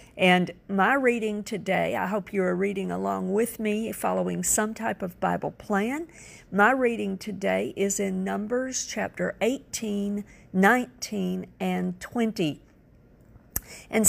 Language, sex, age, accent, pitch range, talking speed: English, female, 50-69, American, 190-230 Hz, 130 wpm